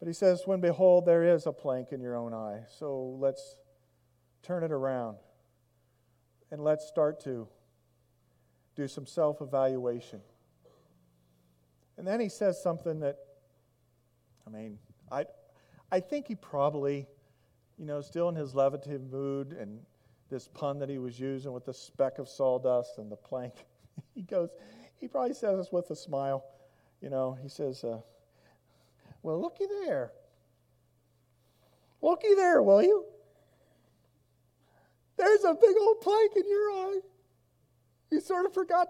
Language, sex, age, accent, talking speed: English, male, 40-59, American, 145 wpm